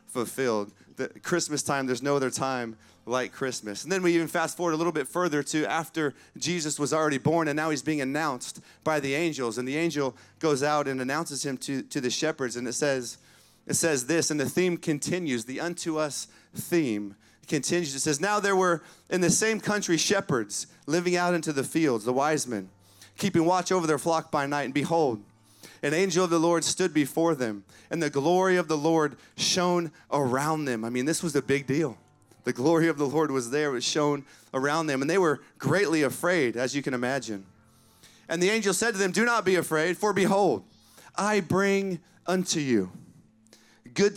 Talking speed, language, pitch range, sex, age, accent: 200 wpm, English, 130-175 Hz, male, 30-49, American